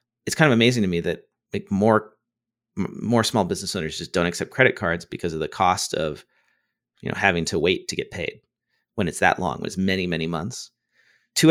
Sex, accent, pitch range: male, American, 100-125 Hz